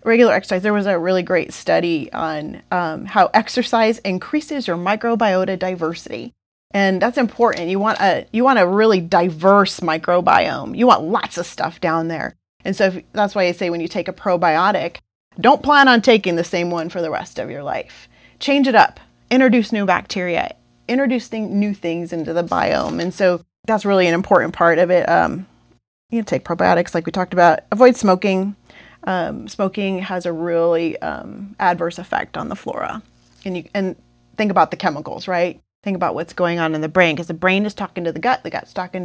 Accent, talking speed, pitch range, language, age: American, 200 wpm, 170-205 Hz, English, 30-49